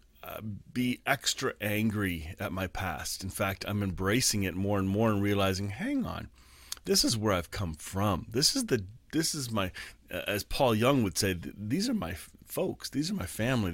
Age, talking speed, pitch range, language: 30-49, 200 wpm, 95-120 Hz, English